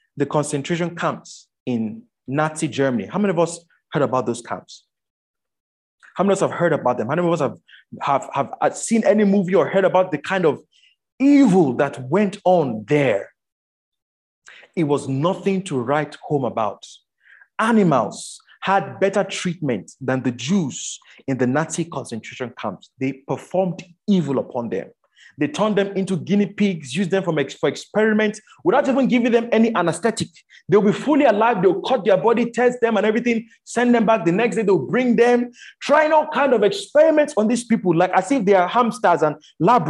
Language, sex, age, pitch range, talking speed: English, male, 30-49, 160-240 Hz, 180 wpm